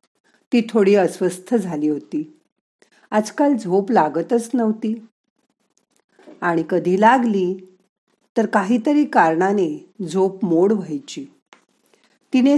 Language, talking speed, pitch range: Marathi, 90 wpm, 180-235 Hz